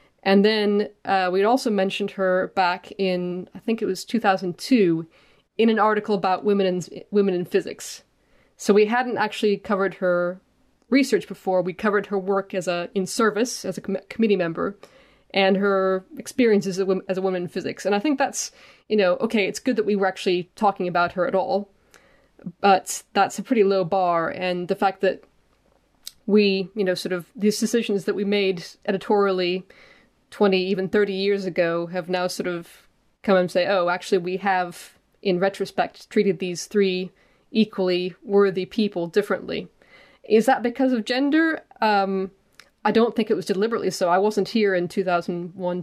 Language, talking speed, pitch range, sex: English, 180 wpm, 180-205 Hz, female